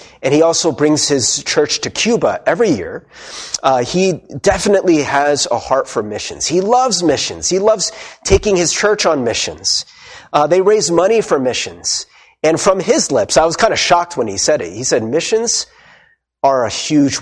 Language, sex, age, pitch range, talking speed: English, male, 40-59, 135-195 Hz, 185 wpm